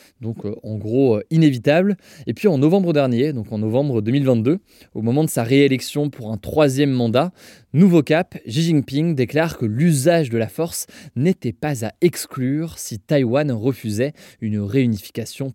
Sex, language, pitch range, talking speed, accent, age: male, French, 115-150 Hz, 165 wpm, French, 20-39